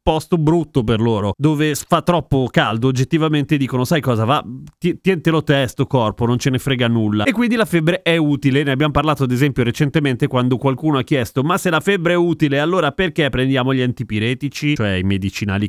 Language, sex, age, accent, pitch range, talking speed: Italian, male, 30-49, native, 125-155 Hz, 195 wpm